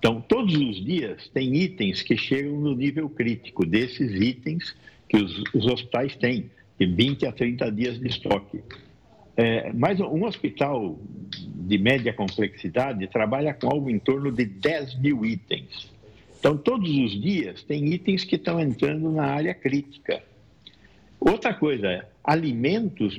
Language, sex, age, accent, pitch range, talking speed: Portuguese, male, 60-79, Brazilian, 115-170 Hz, 150 wpm